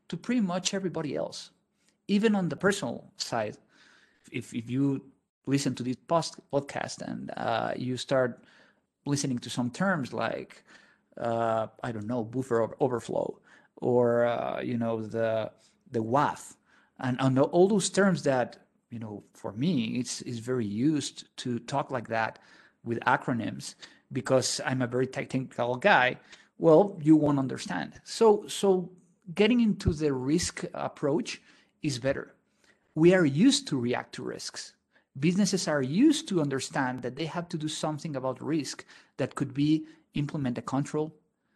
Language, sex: English, male